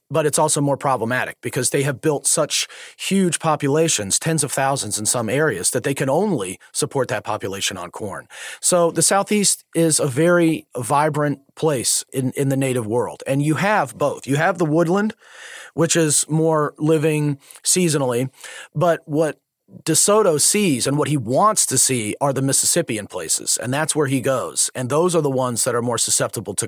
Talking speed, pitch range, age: 185 wpm, 135-175 Hz, 40-59